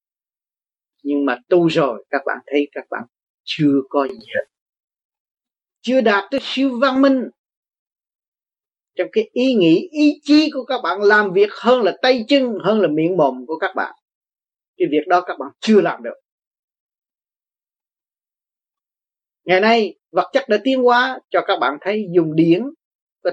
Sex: male